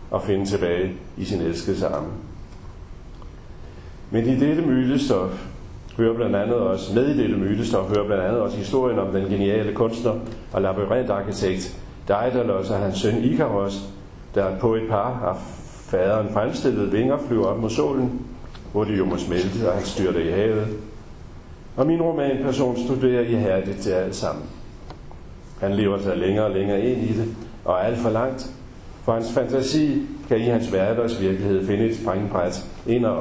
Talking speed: 170 wpm